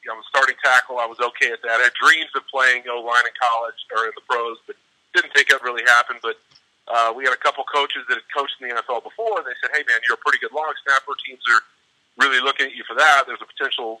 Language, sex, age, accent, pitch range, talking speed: English, male, 40-59, American, 115-145 Hz, 280 wpm